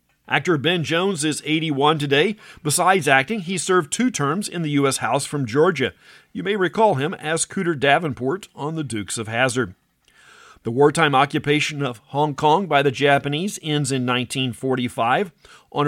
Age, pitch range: 50-69, 130-170 Hz